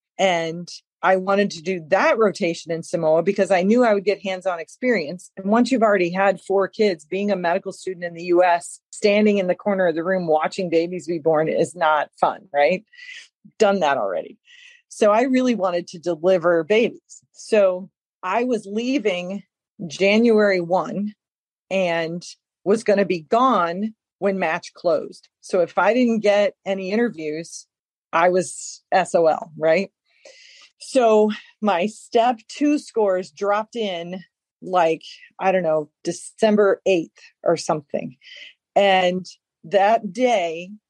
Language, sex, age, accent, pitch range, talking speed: English, female, 40-59, American, 180-220 Hz, 145 wpm